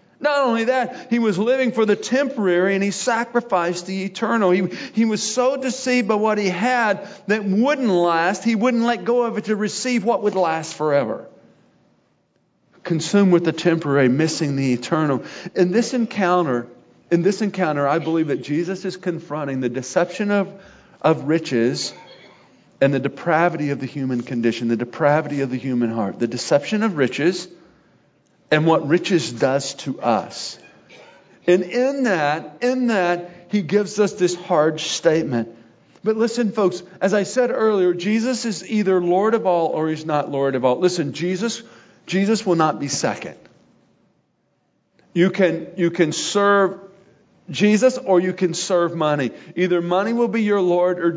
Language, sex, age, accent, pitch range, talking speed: English, male, 40-59, American, 160-215 Hz, 160 wpm